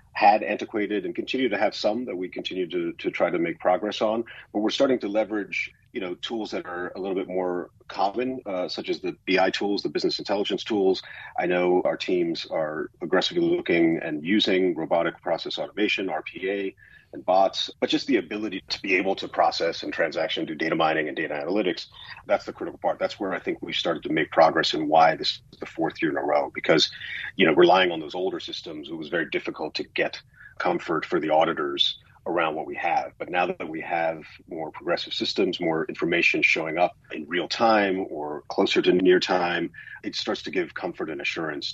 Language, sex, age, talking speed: English, male, 40-59, 210 wpm